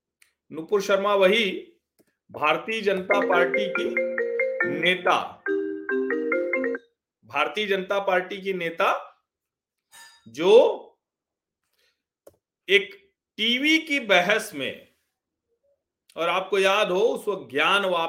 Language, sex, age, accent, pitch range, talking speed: Hindi, male, 40-59, native, 185-280 Hz, 85 wpm